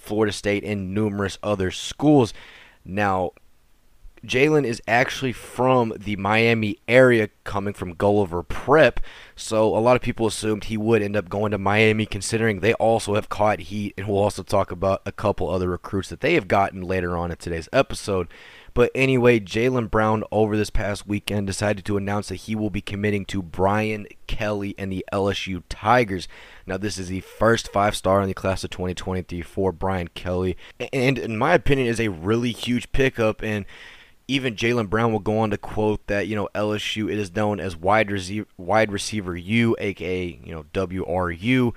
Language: English